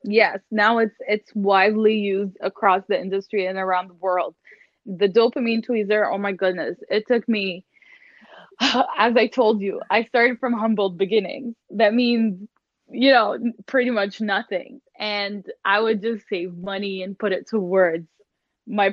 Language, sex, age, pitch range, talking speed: English, female, 10-29, 190-230 Hz, 155 wpm